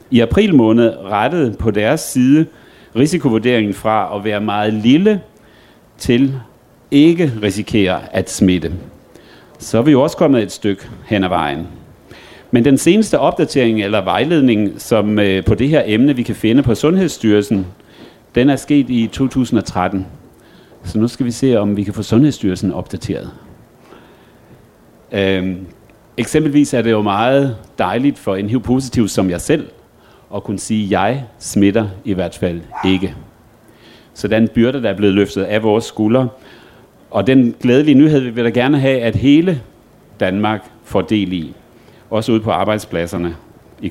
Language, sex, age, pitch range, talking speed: Danish, male, 40-59, 100-130 Hz, 155 wpm